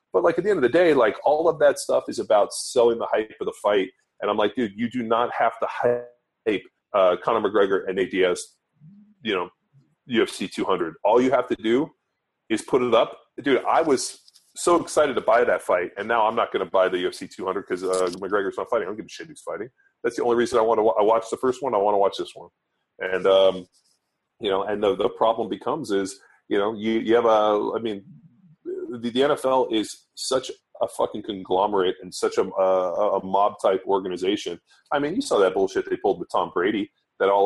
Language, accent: English, American